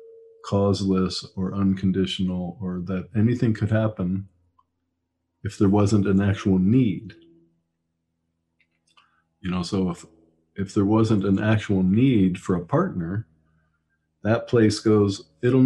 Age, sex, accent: 50-69, male, American